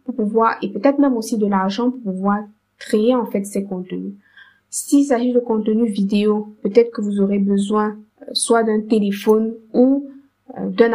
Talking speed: 160 wpm